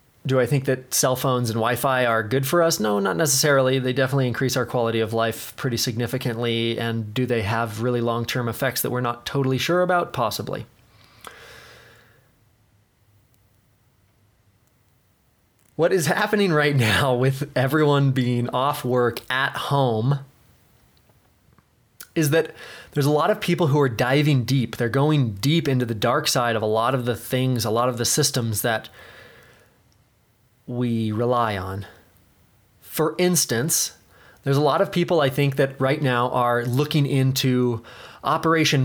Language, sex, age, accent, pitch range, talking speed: English, male, 20-39, American, 115-135 Hz, 155 wpm